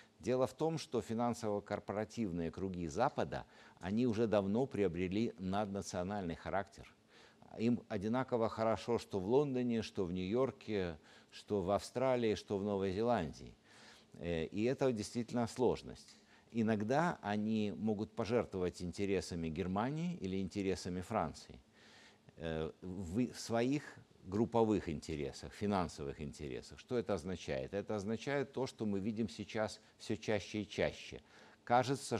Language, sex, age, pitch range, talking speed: Russian, male, 50-69, 95-115 Hz, 115 wpm